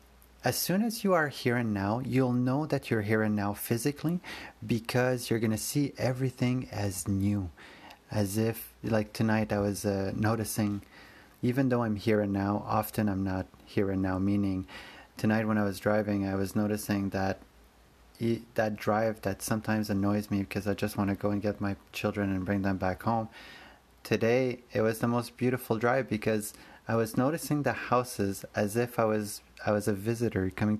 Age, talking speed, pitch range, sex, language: 30-49, 190 wpm, 100-115 Hz, male, English